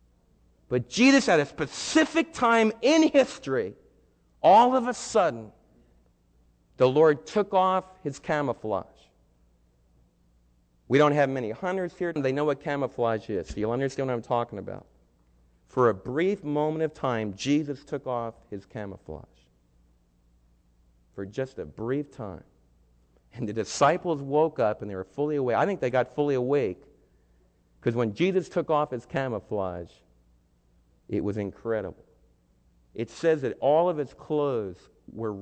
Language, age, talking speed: English, 40-59, 145 wpm